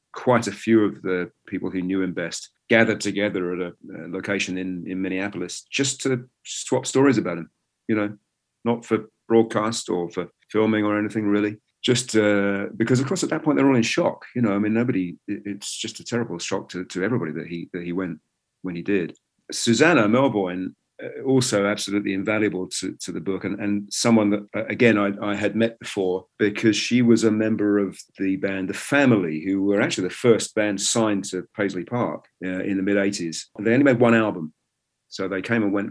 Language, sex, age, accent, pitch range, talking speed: English, male, 40-59, British, 95-110 Hz, 205 wpm